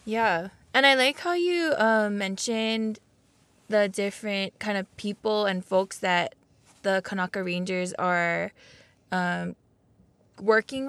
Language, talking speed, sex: English, 120 wpm, female